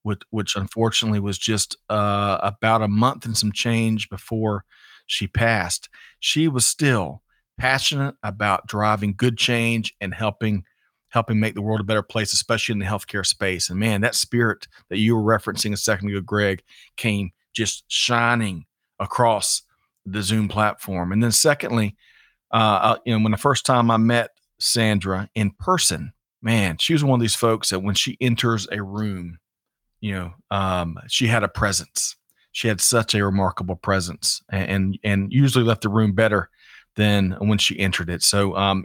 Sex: male